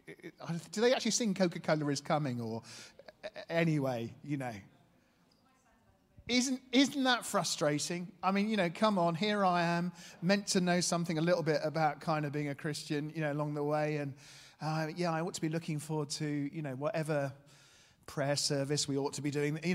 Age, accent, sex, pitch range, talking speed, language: 40-59, British, male, 150-185 Hz, 190 wpm, English